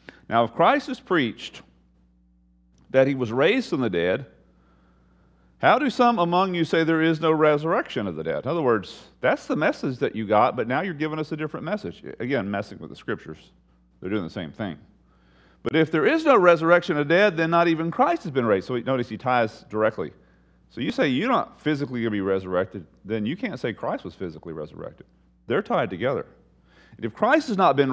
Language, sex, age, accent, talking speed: English, male, 40-59, American, 215 wpm